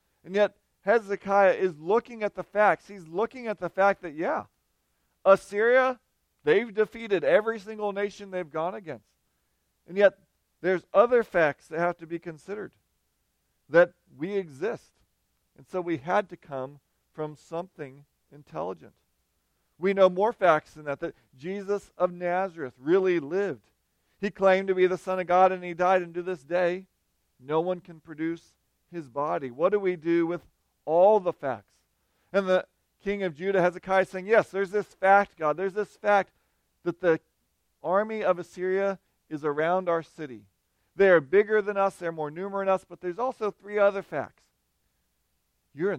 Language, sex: English, male